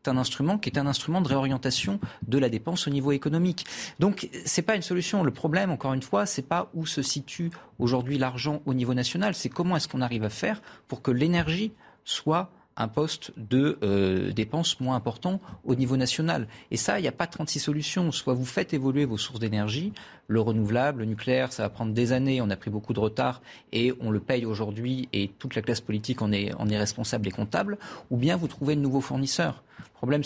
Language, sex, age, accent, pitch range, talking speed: French, male, 40-59, French, 115-145 Hz, 220 wpm